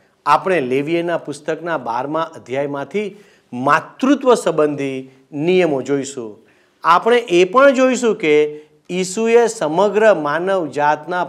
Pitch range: 140-215 Hz